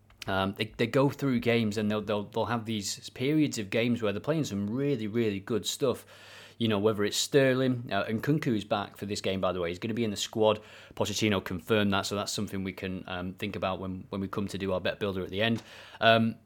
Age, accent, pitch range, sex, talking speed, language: 30-49, British, 100-120 Hz, male, 255 wpm, English